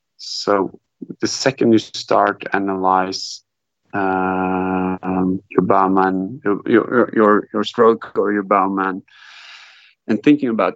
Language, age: English, 30-49